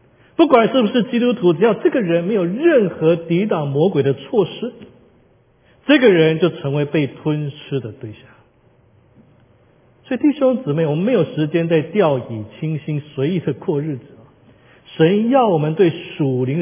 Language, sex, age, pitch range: Chinese, male, 50-69, 125-185 Hz